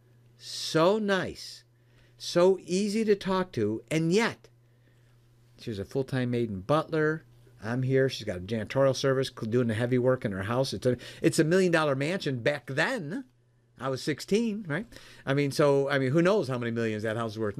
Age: 50-69